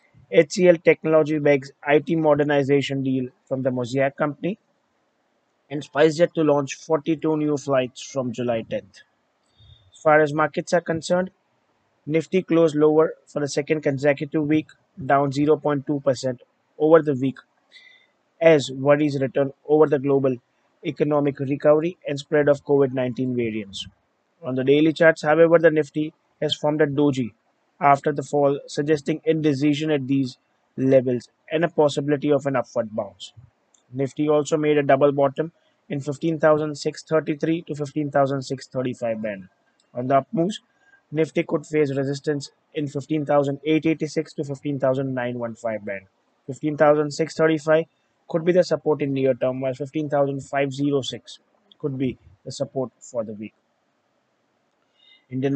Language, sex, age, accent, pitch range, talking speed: English, male, 20-39, Indian, 135-155 Hz, 130 wpm